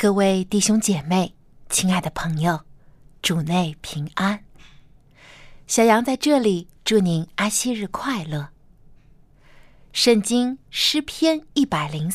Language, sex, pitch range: Chinese, female, 150-220 Hz